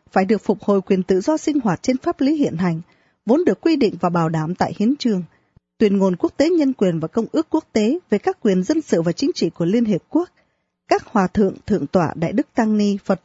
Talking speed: 260 wpm